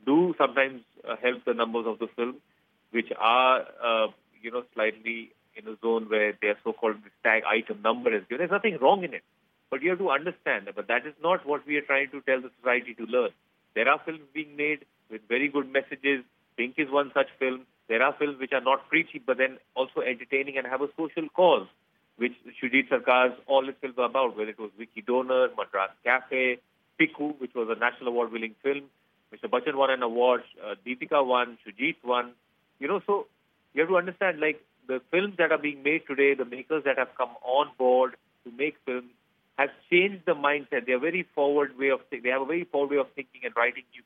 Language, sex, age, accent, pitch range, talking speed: English, male, 40-59, Indian, 125-145 Hz, 215 wpm